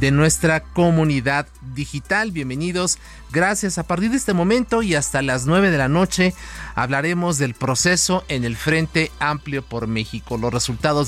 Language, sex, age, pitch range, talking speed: Spanish, male, 40-59, 130-170 Hz, 155 wpm